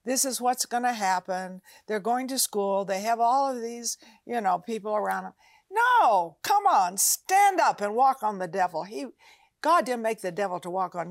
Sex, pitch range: female, 195-290 Hz